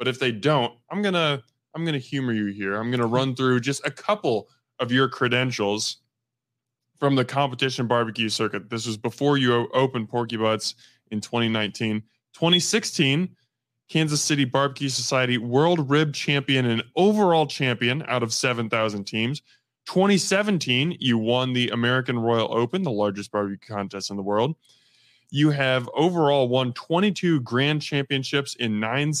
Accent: American